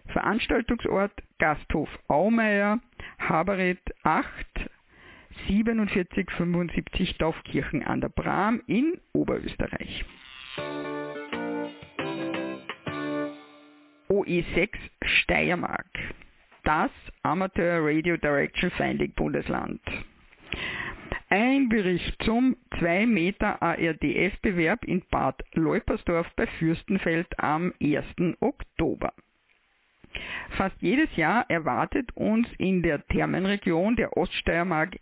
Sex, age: female, 50-69